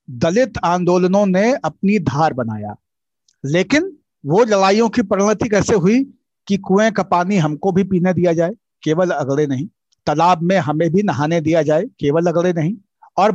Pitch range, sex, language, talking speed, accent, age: 165-230 Hz, male, Hindi, 160 wpm, native, 50-69